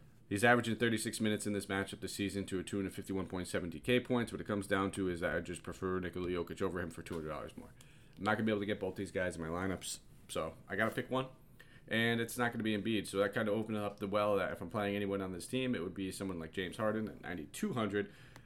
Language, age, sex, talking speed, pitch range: English, 30-49, male, 265 wpm, 95-110 Hz